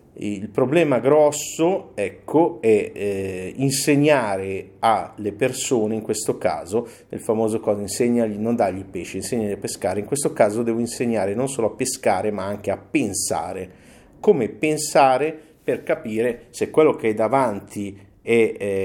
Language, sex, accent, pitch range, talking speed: Italian, male, native, 100-145 Hz, 145 wpm